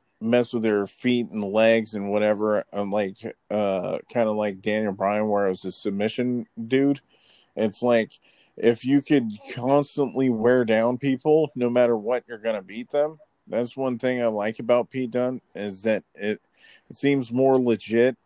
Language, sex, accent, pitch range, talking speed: English, male, American, 105-120 Hz, 175 wpm